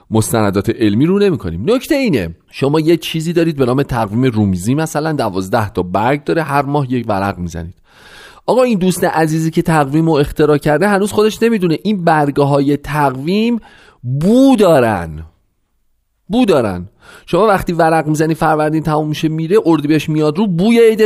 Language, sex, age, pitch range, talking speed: Persian, male, 40-59, 115-175 Hz, 160 wpm